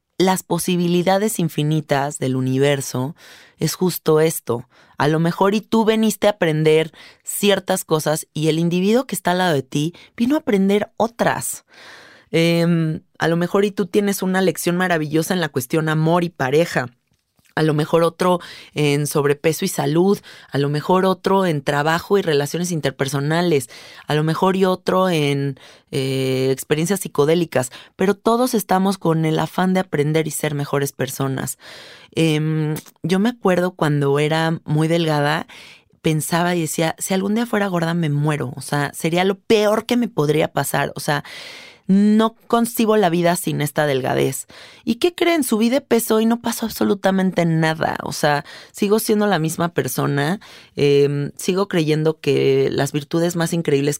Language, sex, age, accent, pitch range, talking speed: Spanish, female, 20-39, Mexican, 145-190 Hz, 165 wpm